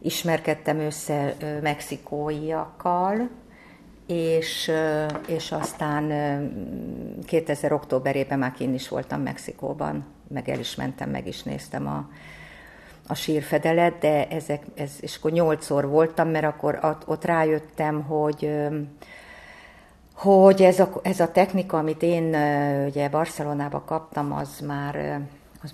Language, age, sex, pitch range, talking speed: Hungarian, 50-69, female, 145-160 Hz, 115 wpm